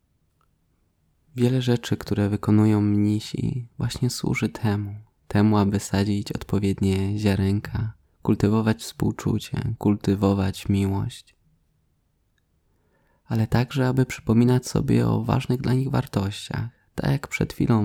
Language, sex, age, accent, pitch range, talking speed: Polish, male, 20-39, native, 100-120 Hz, 105 wpm